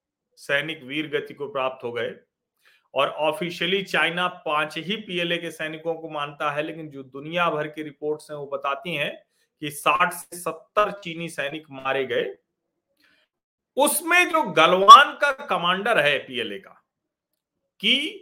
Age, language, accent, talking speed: 40-59, Hindi, native, 145 wpm